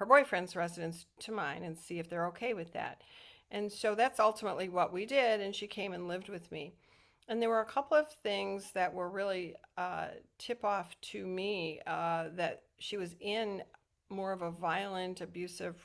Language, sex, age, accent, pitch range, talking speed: English, female, 50-69, American, 175-220 Hz, 195 wpm